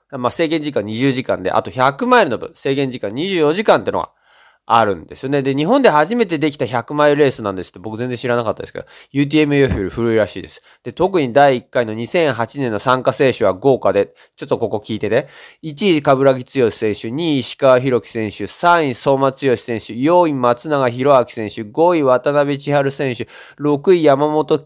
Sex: male